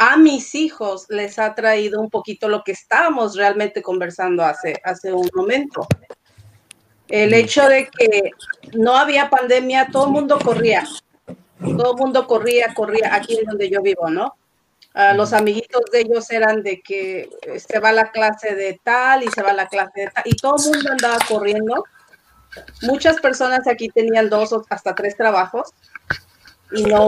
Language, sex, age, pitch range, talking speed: Spanish, female, 40-59, 200-245 Hz, 170 wpm